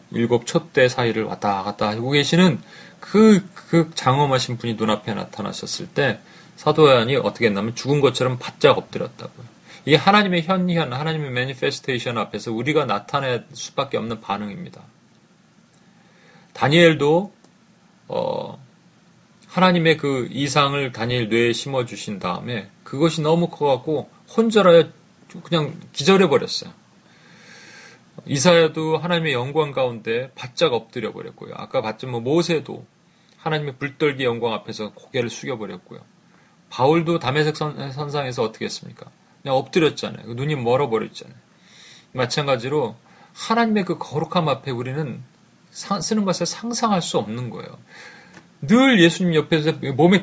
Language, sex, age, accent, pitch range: Korean, male, 30-49, native, 125-175 Hz